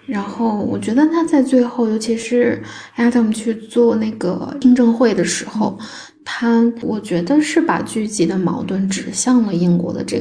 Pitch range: 180-235 Hz